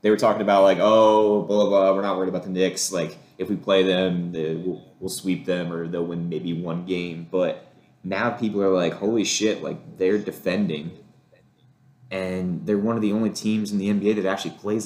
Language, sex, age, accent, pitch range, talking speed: English, male, 20-39, American, 95-115 Hz, 210 wpm